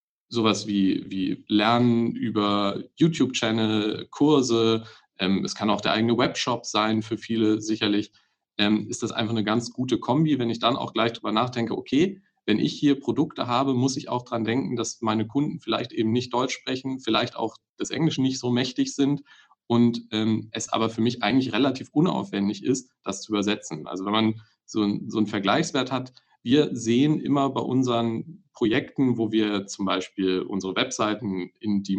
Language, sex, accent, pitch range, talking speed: German, male, German, 105-125 Hz, 180 wpm